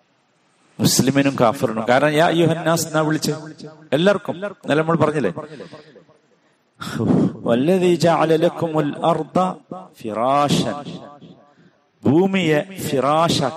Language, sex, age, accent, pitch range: Malayalam, male, 50-69, native, 130-175 Hz